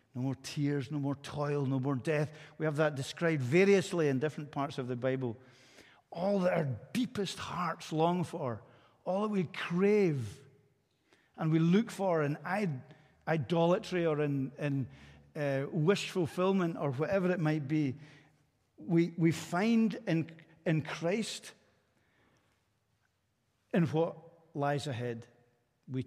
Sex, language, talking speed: male, English, 135 wpm